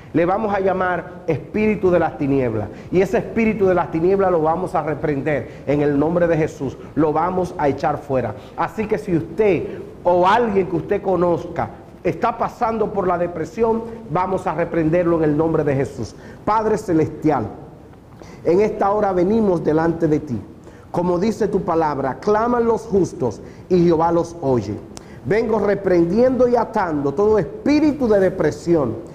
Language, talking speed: Spanish, 160 wpm